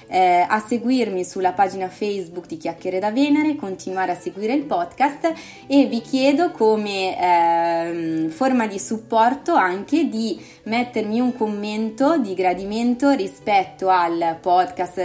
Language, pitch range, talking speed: Italian, 180-240 Hz, 130 wpm